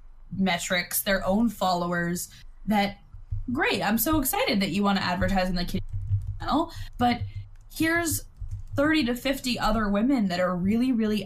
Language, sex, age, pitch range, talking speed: English, female, 10-29, 170-210 Hz, 150 wpm